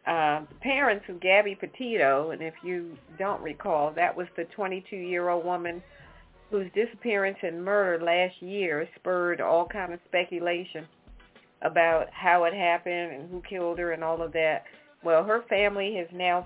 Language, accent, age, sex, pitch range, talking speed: English, American, 40-59, female, 165-205 Hz, 155 wpm